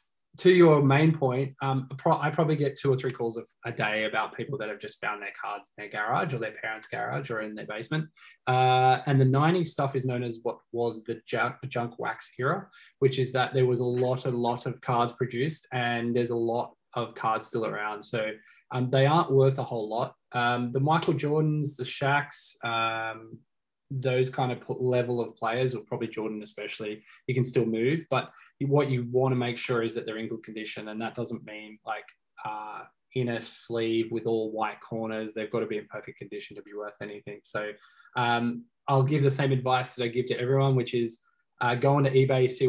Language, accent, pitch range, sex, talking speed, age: English, Australian, 115-130 Hz, male, 215 wpm, 20-39